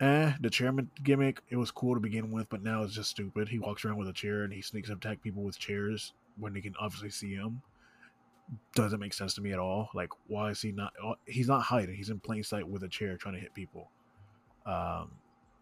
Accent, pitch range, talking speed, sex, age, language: American, 100-120 Hz, 240 wpm, male, 20-39, English